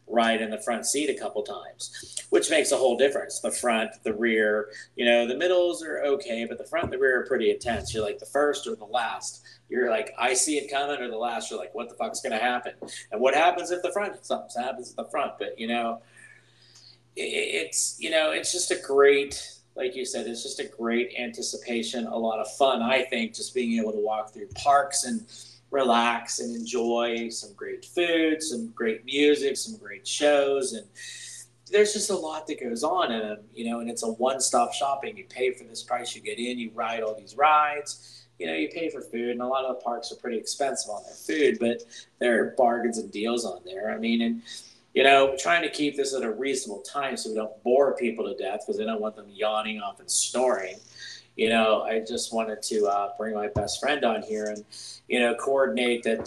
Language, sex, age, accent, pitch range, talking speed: English, male, 30-49, American, 115-155 Hz, 225 wpm